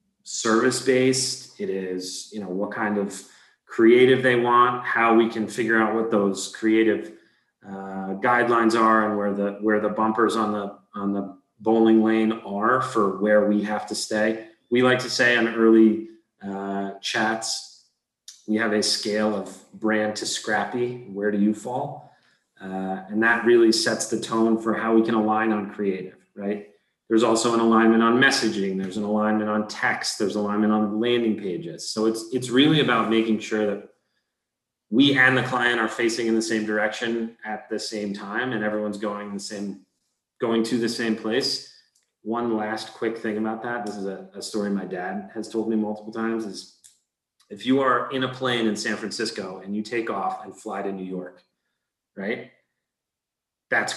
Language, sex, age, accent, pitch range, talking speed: English, male, 30-49, American, 105-115 Hz, 180 wpm